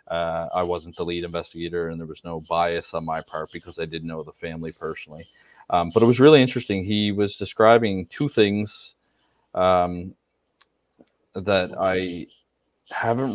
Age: 30-49